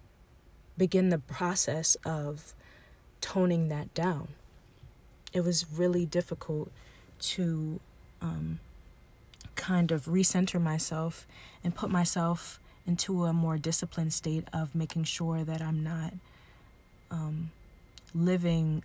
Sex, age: female, 20-39